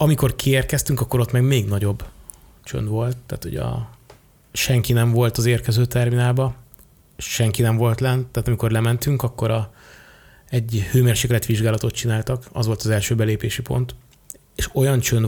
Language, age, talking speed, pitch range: Hungarian, 20-39, 155 wpm, 110-125 Hz